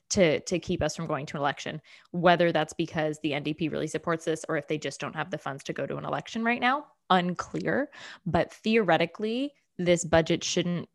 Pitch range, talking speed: 155-185 Hz, 210 wpm